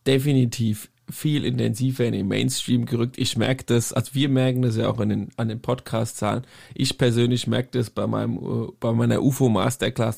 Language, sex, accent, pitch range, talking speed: German, male, German, 115-135 Hz, 175 wpm